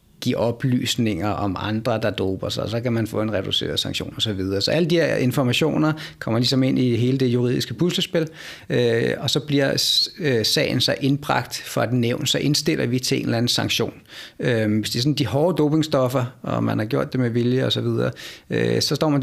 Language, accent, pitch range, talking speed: Danish, native, 115-140 Hz, 225 wpm